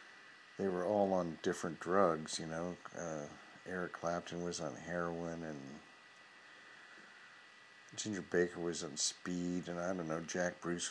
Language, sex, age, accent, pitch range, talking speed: English, male, 50-69, American, 85-100 Hz, 145 wpm